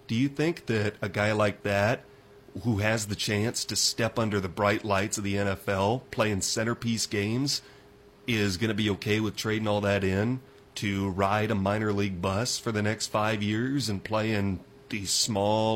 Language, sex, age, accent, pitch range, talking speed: English, male, 40-59, American, 100-130 Hz, 190 wpm